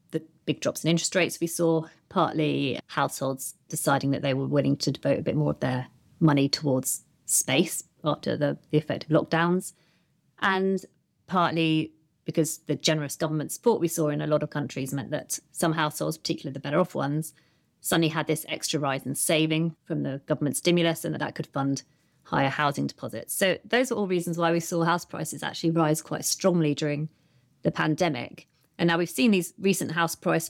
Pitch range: 150-170 Hz